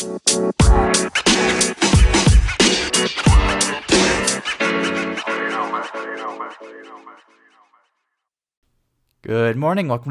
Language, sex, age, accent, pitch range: English, male, 20-39, American, 105-125 Hz